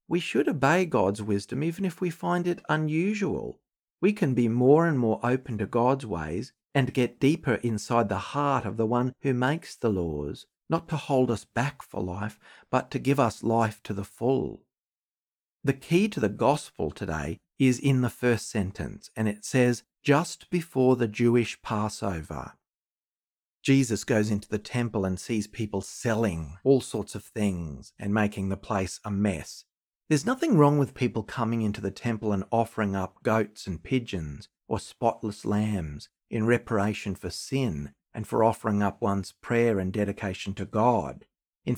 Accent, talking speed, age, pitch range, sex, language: Australian, 170 wpm, 50-69, 105-140 Hz, male, English